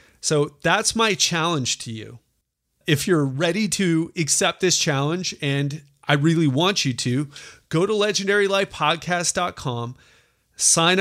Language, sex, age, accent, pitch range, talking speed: English, male, 30-49, American, 140-180 Hz, 125 wpm